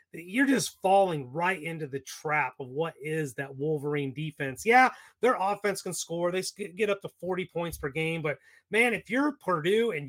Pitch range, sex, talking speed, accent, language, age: 140-200 Hz, male, 190 wpm, American, English, 30-49